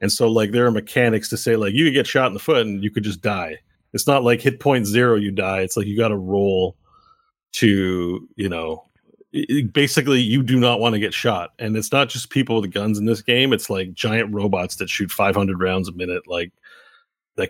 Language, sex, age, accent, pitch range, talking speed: English, male, 30-49, American, 100-130 Hz, 235 wpm